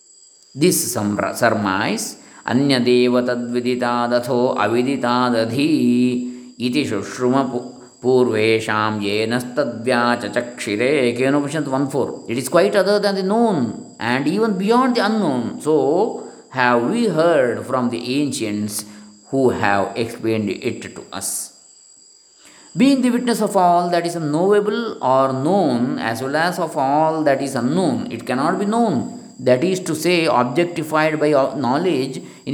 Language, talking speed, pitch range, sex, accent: English, 105 wpm, 120-195 Hz, male, Indian